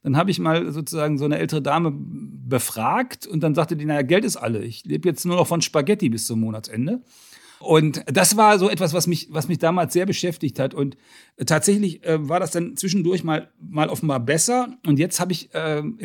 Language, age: German, 40-59